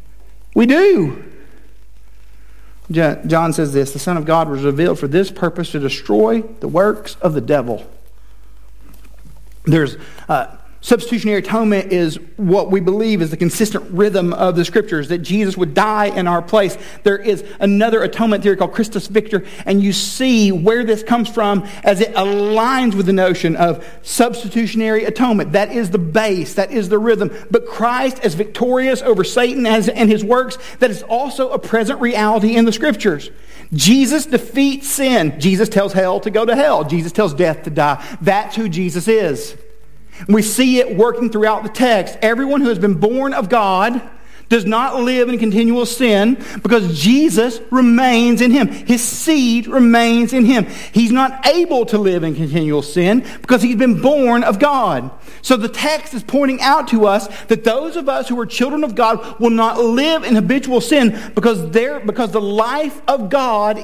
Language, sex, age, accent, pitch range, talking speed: English, male, 50-69, American, 185-240 Hz, 175 wpm